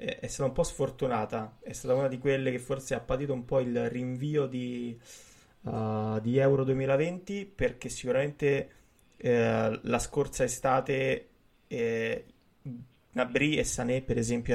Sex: male